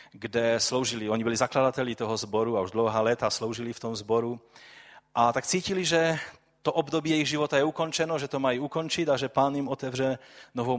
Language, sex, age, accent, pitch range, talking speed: Czech, male, 30-49, native, 115-155 Hz, 195 wpm